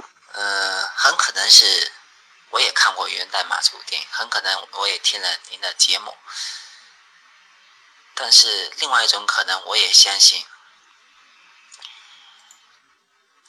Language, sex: Chinese, male